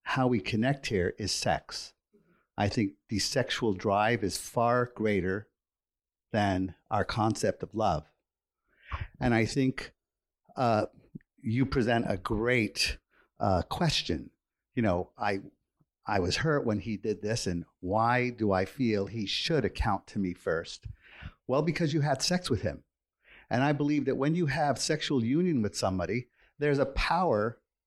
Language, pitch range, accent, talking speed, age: English, 110-140 Hz, American, 155 wpm, 50-69